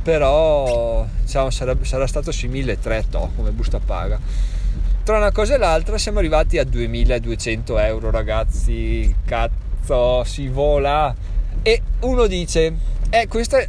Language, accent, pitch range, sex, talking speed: Italian, native, 100-160 Hz, male, 125 wpm